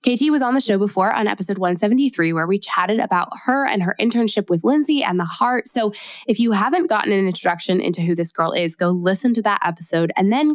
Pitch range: 180-230 Hz